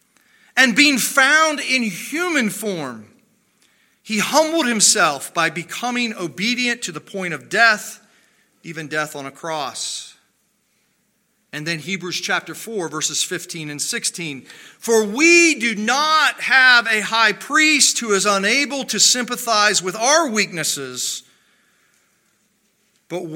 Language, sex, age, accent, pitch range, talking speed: English, male, 40-59, American, 170-240 Hz, 125 wpm